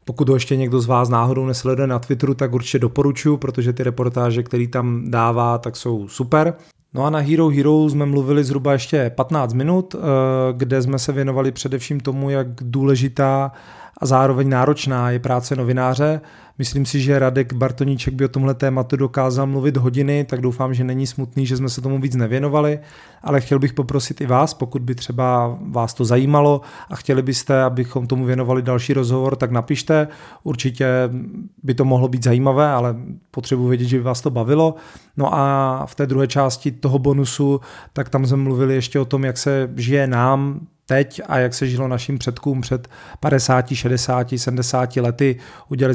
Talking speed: 180 wpm